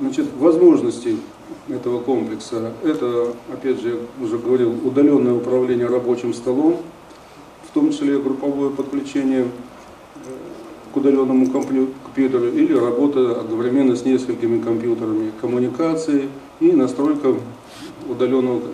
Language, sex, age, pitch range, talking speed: Russian, male, 40-59, 120-150 Hz, 100 wpm